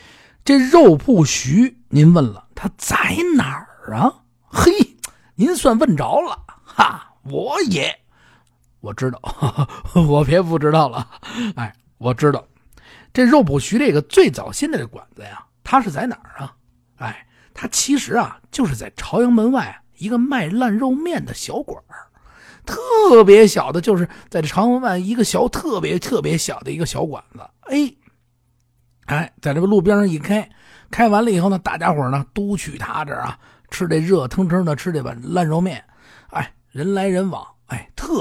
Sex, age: male, 50-69